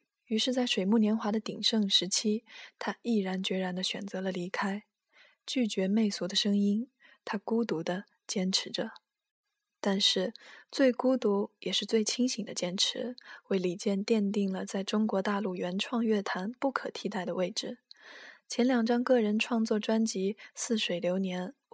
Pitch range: 190-235 Hz